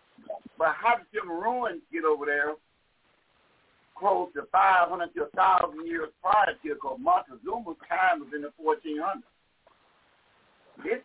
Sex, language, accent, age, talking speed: male, English, American, 60-79, 125 wpm